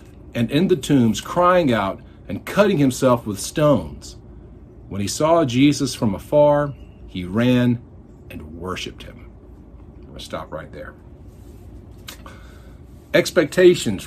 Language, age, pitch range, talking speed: English, 50-69, 100-140 Hz, 120 wpm